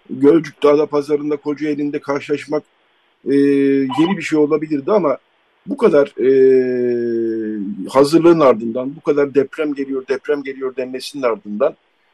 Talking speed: 125 wpm